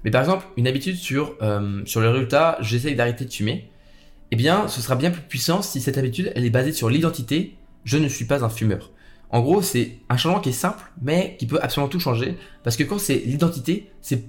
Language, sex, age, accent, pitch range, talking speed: French, male, 20-39, French, 115-165 Hz, 250 wpm